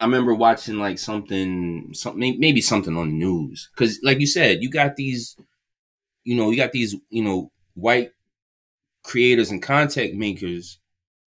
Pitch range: 105-140 Hz